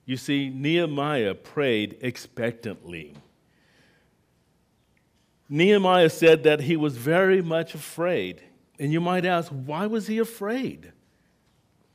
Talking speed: 105 wpm